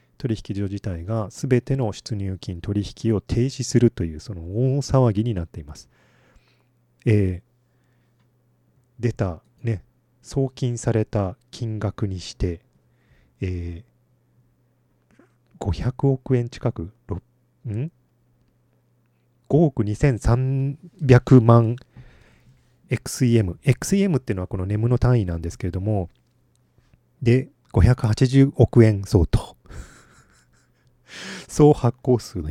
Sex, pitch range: male, 95-125 Hz